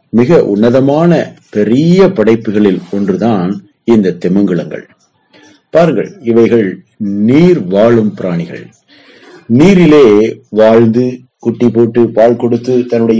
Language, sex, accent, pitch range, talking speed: Tamil, male, native, 105-155 Hz, 85 wpm